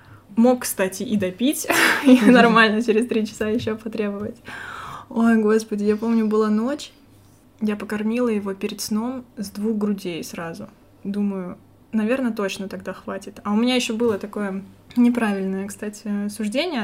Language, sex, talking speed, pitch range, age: Russian, female, 145 wpm, 200-225 Hz, 20-39